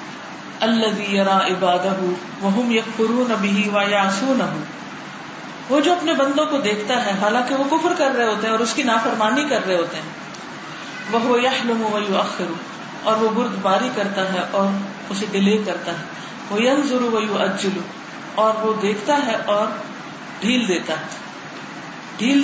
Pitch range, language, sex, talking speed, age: 200-270 Hz, Urdu, female, 140 wpm, 40-59